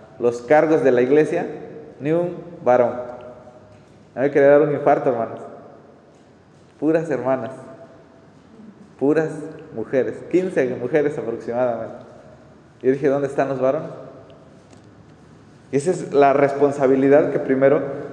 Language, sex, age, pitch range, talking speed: Spanish, male, 30-49, 140-185 Hz, 120 wpm